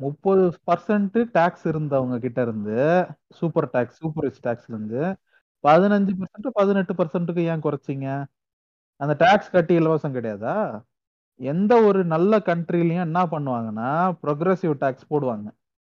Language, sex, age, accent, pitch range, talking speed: Tamil, male, 30-49, native, 130-180 Hz, 110 wpm